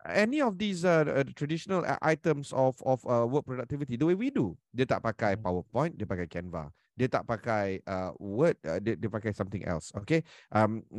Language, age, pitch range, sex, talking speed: Malay, 30-49, 105-150 Hz, male, 190 wpm